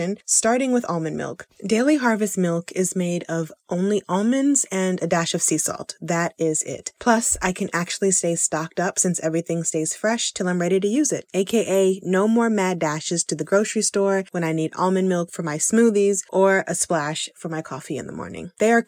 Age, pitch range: 20-39, 165-205 Hz